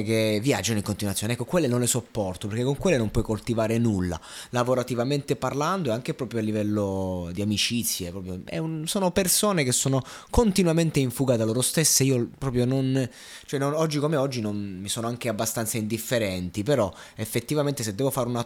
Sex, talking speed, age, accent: male, 190 wpm, 30-49, native